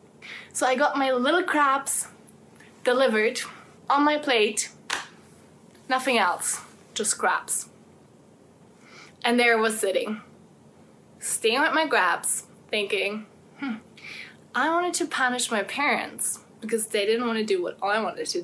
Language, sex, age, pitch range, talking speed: English, female, 20-39, 205-285 Hz, 135 wpm